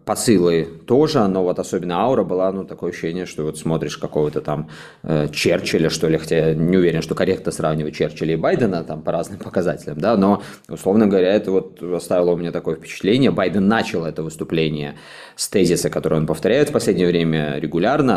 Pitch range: 80-95 Hz